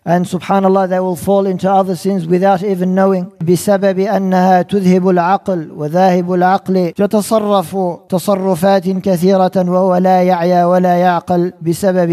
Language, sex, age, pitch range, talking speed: English, male, 50-69, 175-195 Hz, 65 wpm